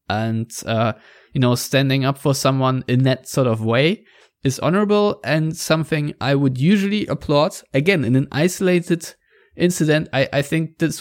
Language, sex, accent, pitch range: English, male, German, 120-145 Hz